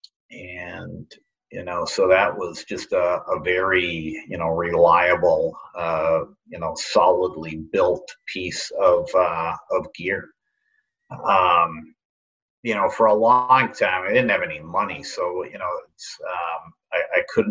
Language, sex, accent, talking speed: English, male, American, 145 wpm